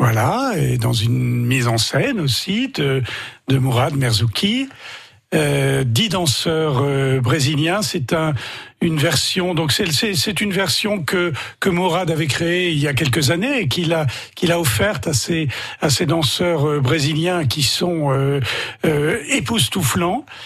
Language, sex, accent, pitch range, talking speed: French, male, French, 130-175 Hz, 160 wpm